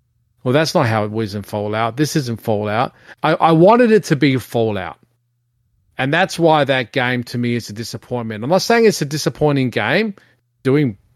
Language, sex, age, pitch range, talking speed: English, male, 40-59, 115-145 Hz, 195 wpm